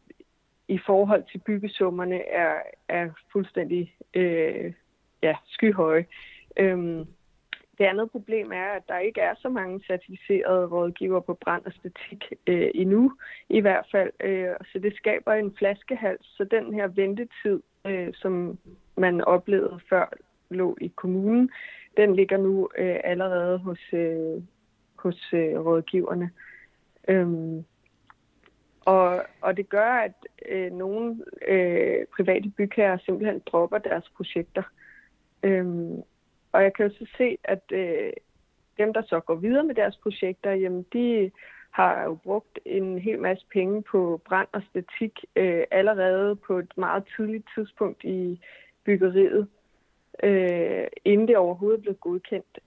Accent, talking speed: native, 125 wpm